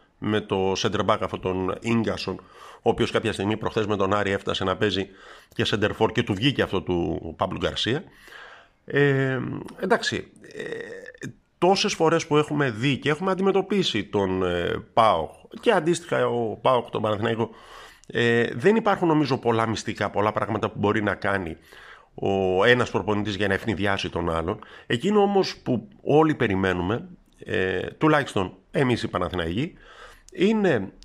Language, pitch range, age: Greek, 105-150 Hz, 50-69